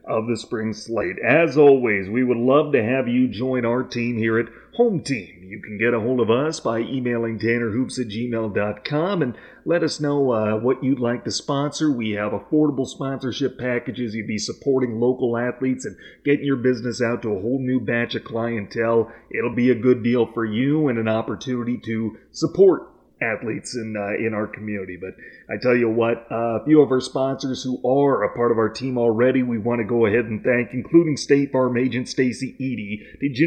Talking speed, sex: 205 wpm, male